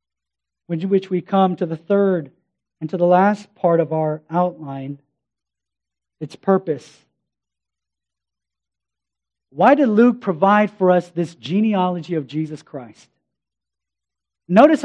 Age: 40-59